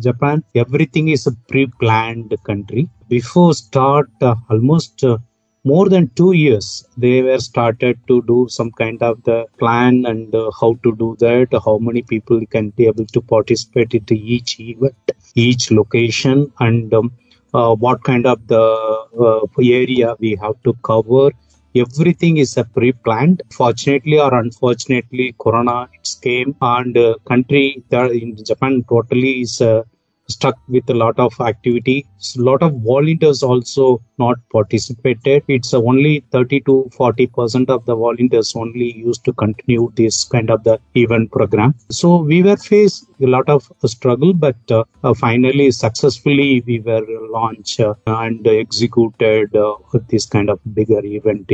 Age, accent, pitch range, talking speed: 30-49, Indian, 115-130 Hz, 150 wpm